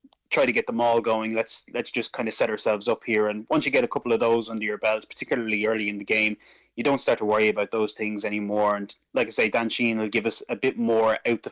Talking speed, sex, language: 280 wpm, male, English